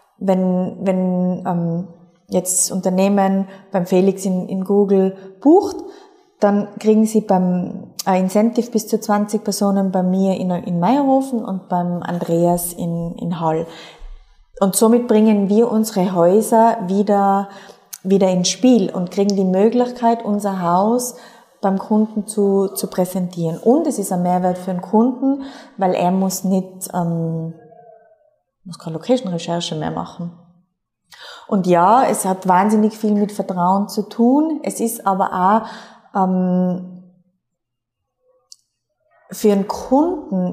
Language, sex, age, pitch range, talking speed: German, female, 20-39, 180-220 Hz, 135 wpm